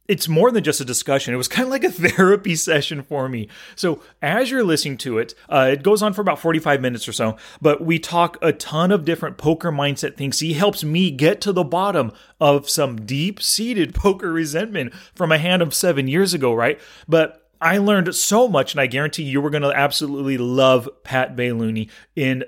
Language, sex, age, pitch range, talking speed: English, male, 30-49, 130-175 Hz, 215 wpm